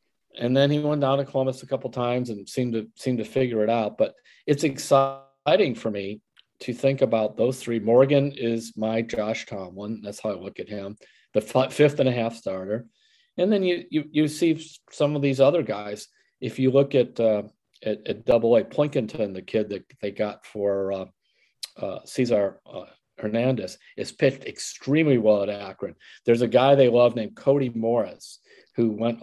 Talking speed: 195 wpm